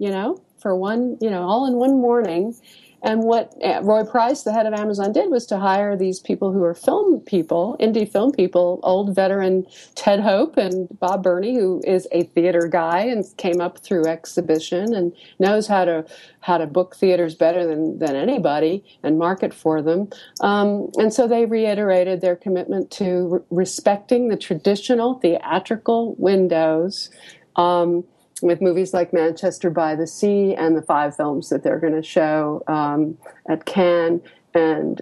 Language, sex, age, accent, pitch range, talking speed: English, female, 50-69, American, 160-200 Hz, 170 wpm